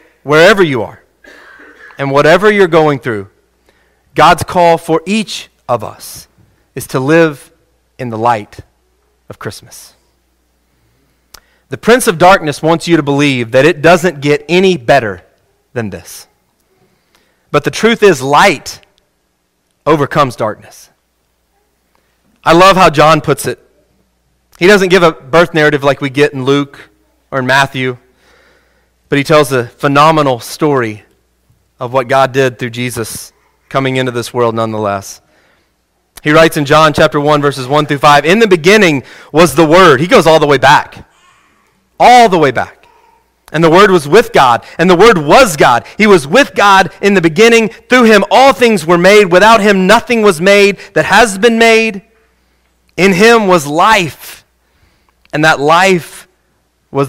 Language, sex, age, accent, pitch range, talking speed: English, male, 30-49, American, 125-190 Hz, 155 wpm